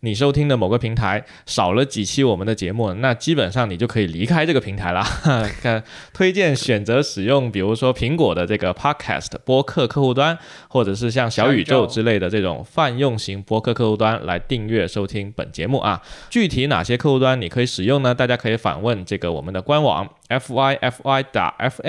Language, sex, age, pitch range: Chinese, male, 20-39, 105-135 Hz